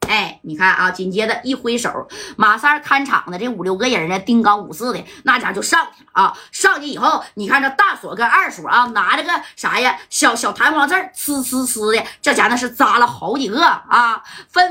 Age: 30-49